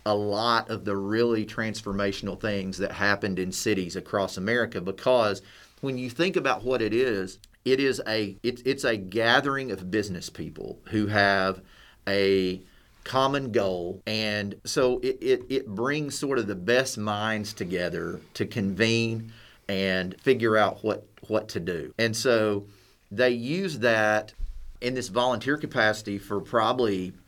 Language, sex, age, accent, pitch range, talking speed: English, male, 30-49, American, 100-120 Hz, 150 wpm